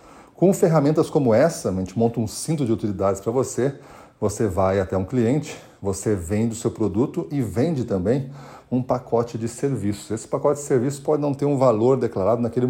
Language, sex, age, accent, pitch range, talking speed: Portuguese, male, 40-59, Brazilian, 100-125 Hz, 195 wpm